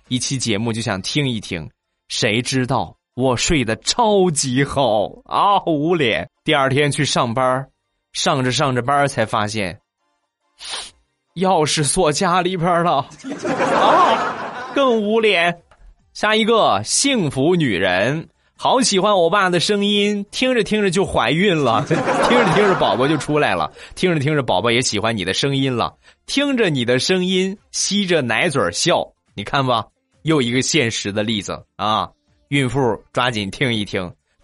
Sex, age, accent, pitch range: male, 20-39, native, 120-200 Hz